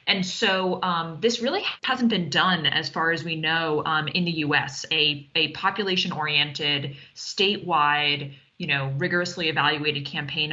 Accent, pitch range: American, 155-190 Hz